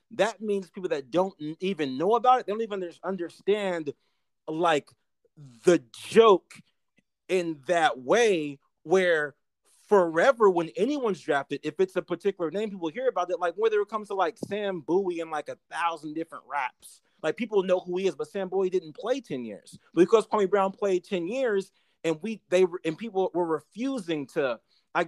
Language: English